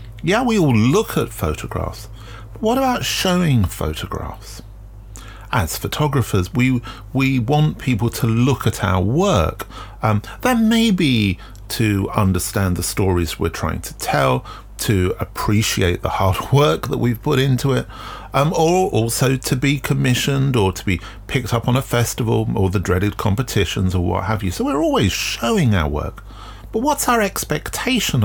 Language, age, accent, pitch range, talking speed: English, 40-59, British, 95-130 Hz, 160 wpm